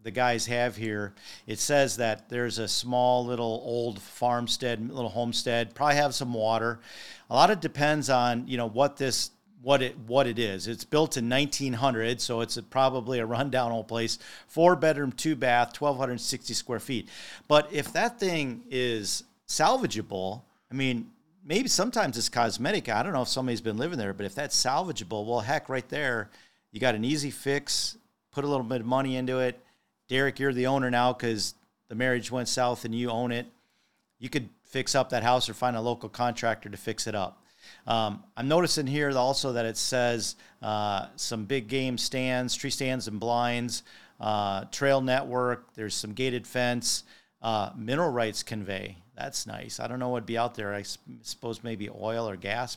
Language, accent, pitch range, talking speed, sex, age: English, American, 115-135 Hz, 190 wpm, male, 40-59